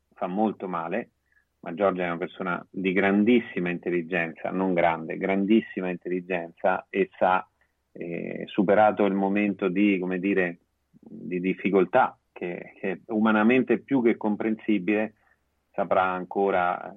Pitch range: 95-110 Hz